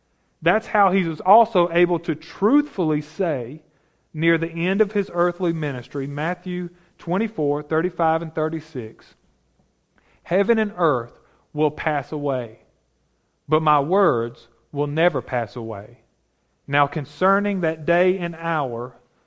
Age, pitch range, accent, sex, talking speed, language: 40-59, 140-185 Hz, American, male, 130 wpm, English